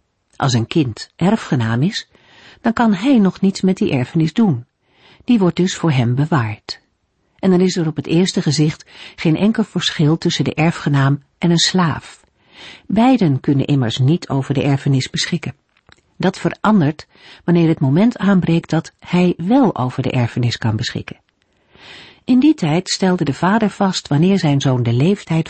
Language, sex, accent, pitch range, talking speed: Dutch, female, Dutch, 140-195 Hz, 165 wpm